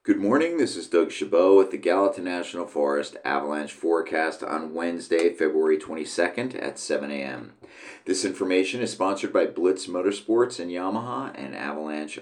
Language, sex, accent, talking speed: English, male, American, 150 wpm